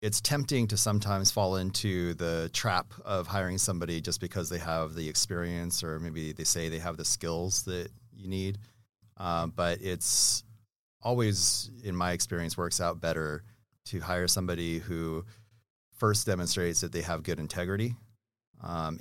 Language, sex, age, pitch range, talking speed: English, male, 30-49, 85-105 Hz, 160 wpm